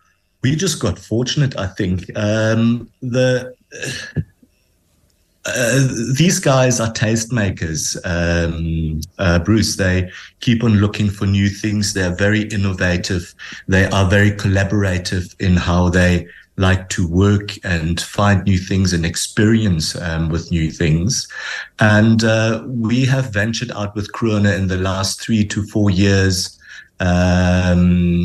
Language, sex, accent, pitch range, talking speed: English, male, German, 90-115 Hz, 130 wpm